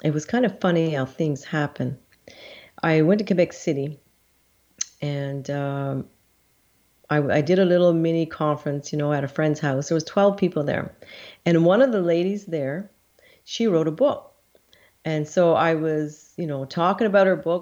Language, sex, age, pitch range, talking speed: English, female, 40-59, 150-185 Hz, 180 wpm